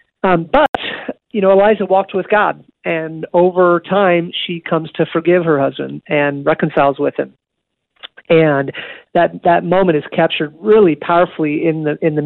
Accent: American